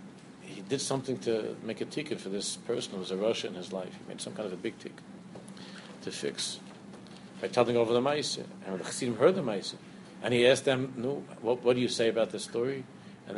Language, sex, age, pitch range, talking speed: English, male, 50-69, 115-150 Hz, 230 wpm